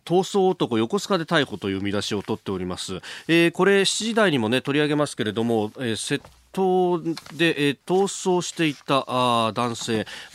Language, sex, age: Japanese, male, 40-59